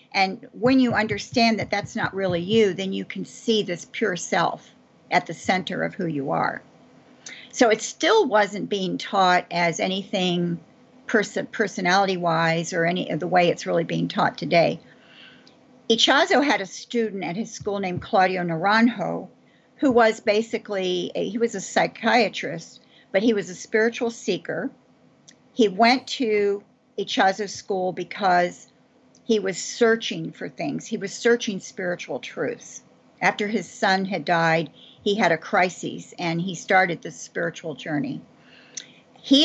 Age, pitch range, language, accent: 50-69, 180-225 Hz, English, American